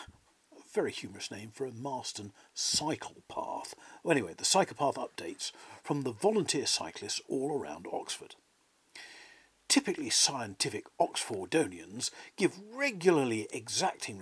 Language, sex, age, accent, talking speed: English, male, 50-69, British, 115 wpm